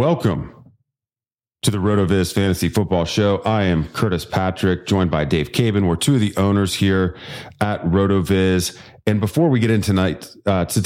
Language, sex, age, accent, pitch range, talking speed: English, male, 30-49, American, 85-105 Hz, 165 wpm